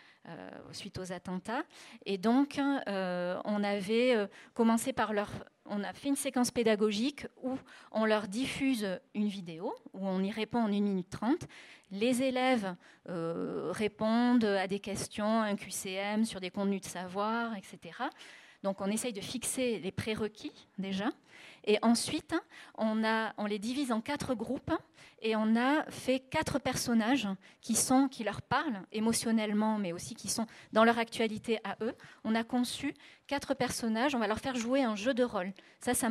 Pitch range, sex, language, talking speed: 205-250 Hz, female, French, 170 wpm